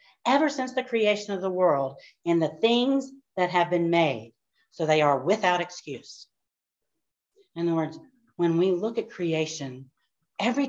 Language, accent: English, American